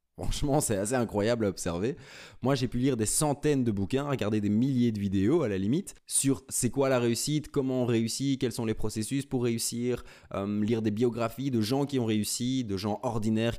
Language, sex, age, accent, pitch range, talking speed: French, male, 20-39, French, 100-140 Hz, 210 wpm